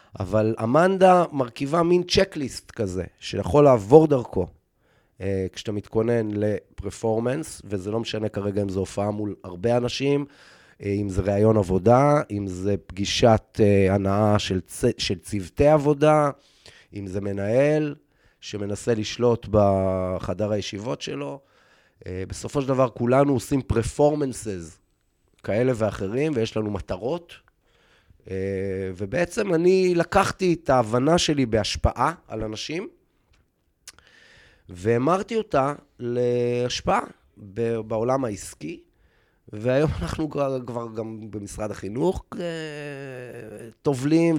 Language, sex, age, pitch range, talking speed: Hebrew, male, 30-49, 100-140 Hz, 100 wpm